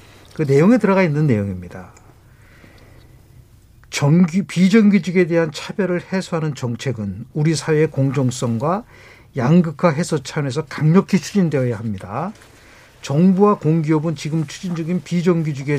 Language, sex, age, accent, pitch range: Korean, male, 50-69, native, 130-190 Hz